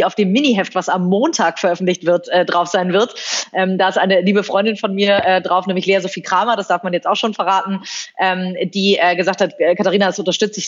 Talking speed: 230 wpm